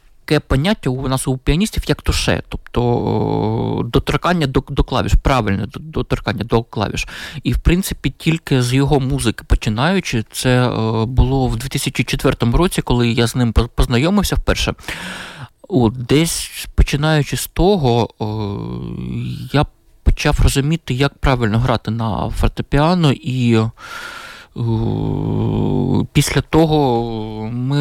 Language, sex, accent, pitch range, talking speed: Ukrainian, male, native, 120-150 Hz, 120 wpm